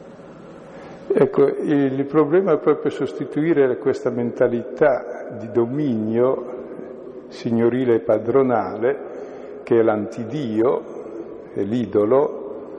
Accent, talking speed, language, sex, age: native, 85 wpm, Italian, male, 50-69